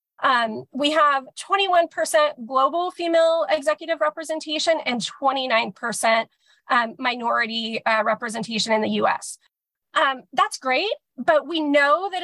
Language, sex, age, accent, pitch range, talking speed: English, female, 30-49, American, 245-305 Hz, 120 wpm